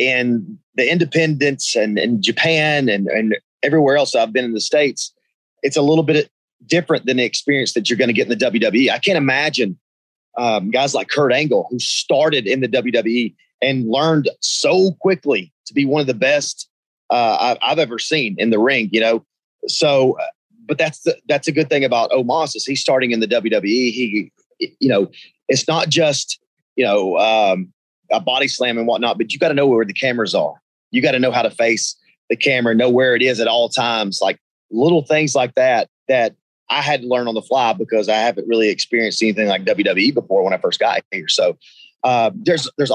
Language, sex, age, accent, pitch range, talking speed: English, male, 30-49, American, 120-160 Hz, 210 wpm